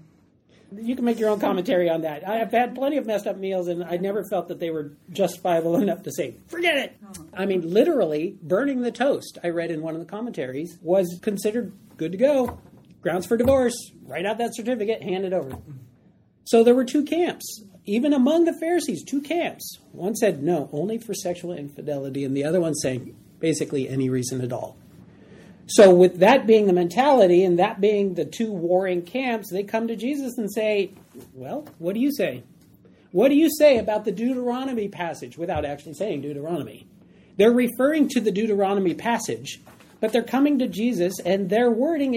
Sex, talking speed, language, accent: male, 190 wpm, English, American